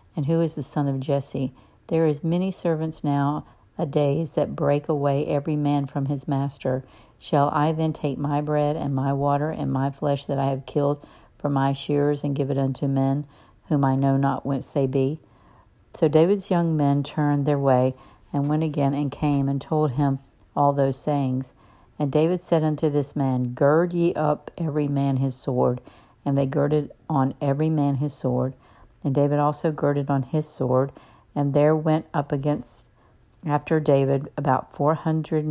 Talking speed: 185 wpm